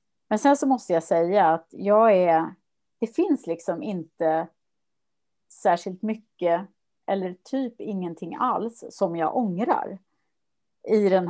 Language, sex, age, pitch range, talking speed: English, female, 30-49, 170-220 Hz, 115 wpm